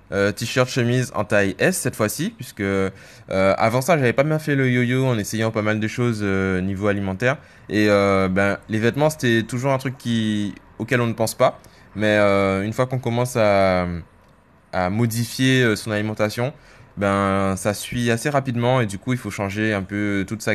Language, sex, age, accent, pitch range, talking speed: French, male, 20-39, French, 95-125 Hz, 200 wpm